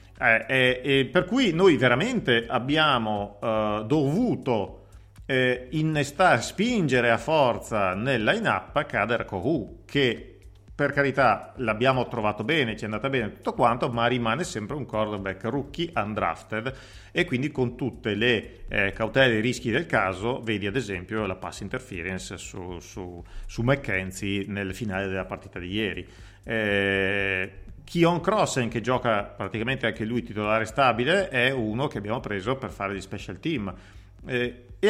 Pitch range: 100-130 Hz